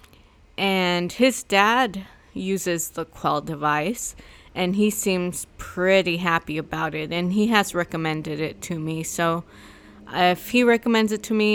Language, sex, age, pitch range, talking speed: English, female, 20-39, 160-205 Hz, 145 wpm